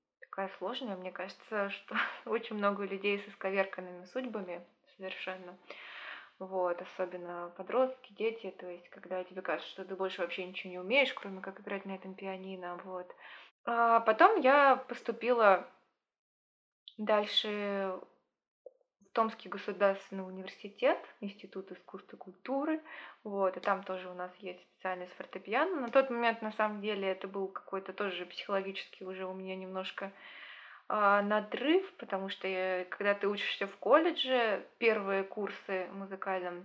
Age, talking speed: 20-39, 140 wpm